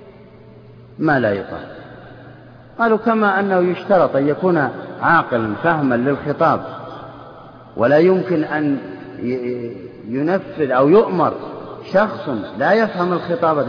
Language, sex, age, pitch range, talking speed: Arabic, male, 50-69, 125-210 Hz, 95 wpm